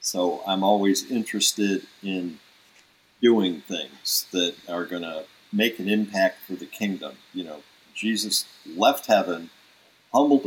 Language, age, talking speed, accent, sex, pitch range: English, 50-69, 130 wpm, American, male, 95-125 Hz